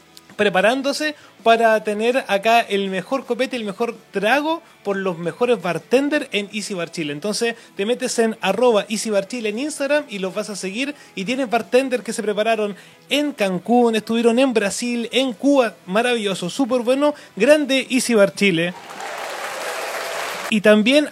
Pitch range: 205-255 Hz